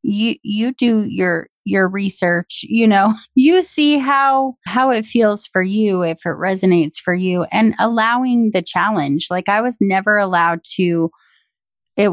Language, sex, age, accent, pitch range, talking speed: English, female, 30-49, American, 175-220 Hz, 160 wpm